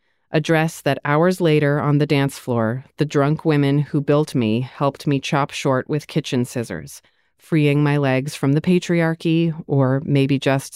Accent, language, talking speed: American, English, 175 wpm